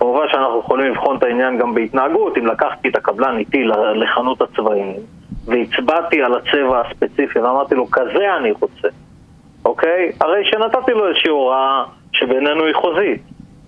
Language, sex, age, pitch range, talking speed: Hebrew, male, 30-49, 120-200 Hz, 145 wpm